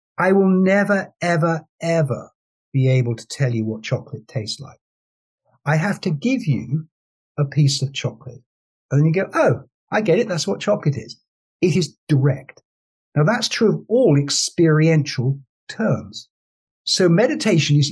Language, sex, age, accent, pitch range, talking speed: English, male, 60-79, British, 130-190 Hz, 160 wpm